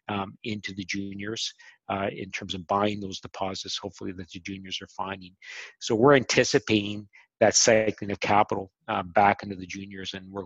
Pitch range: 100-110 Hz